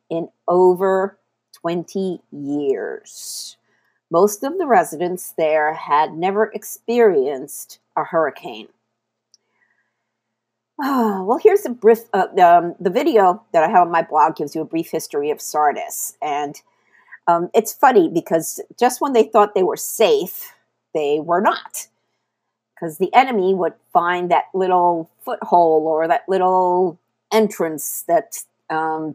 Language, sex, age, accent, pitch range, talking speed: English, female, 50-69, American, 155-220 Hz, 130 wpm